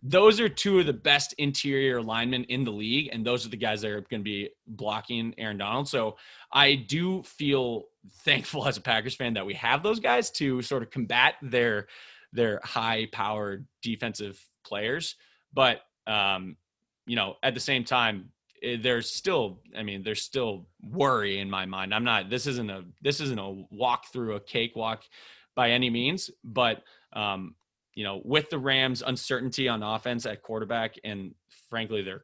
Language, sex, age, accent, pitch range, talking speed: English, male, 20-39, American, 105-135 Hz, 180 wpm